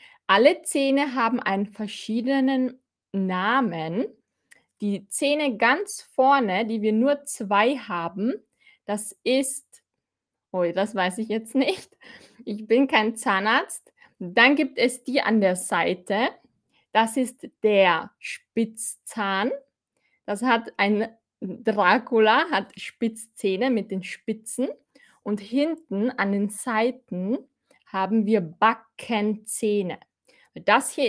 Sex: female